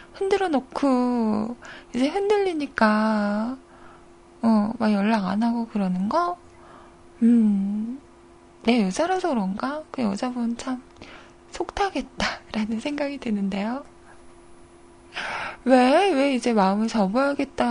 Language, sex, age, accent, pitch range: Korean, female, 20-39, native, 200-265 Hz